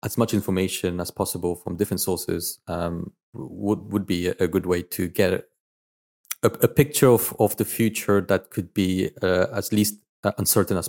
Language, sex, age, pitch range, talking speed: English, male, 30-49, 95-115 Hz, 175 wpm